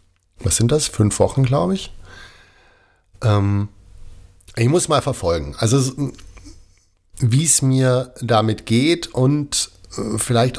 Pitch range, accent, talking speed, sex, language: 95-120 Hz, German, 115 wpm, male, German